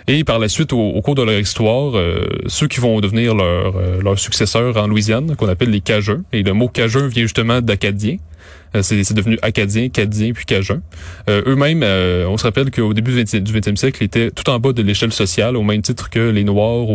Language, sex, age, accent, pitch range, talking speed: French, male, 20-39, Canadian, 100-120 Hz, 230 wpm